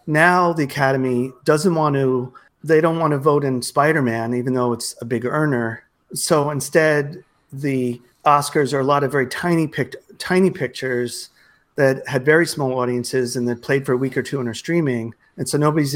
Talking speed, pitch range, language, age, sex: 190 wpm, 125-155 Hz, English, 40-59, male